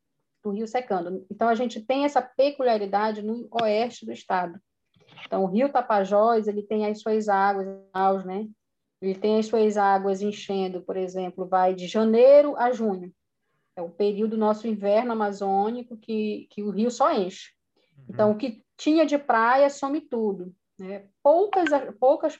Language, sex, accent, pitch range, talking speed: Portuguese, female, Brazilian, 200-245 Hz, 160 wpm